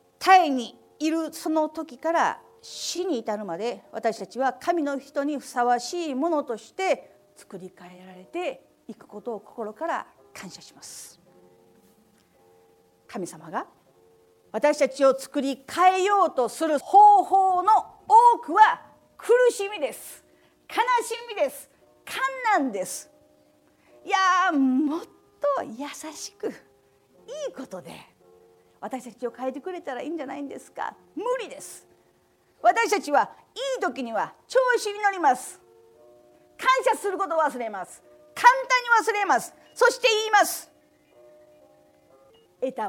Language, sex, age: Japanese, female, 50-69